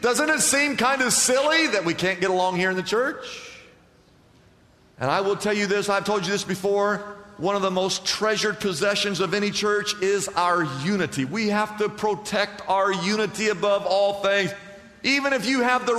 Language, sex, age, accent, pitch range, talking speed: English, male, 50-69, American, 155-215 Hz, 195 wpm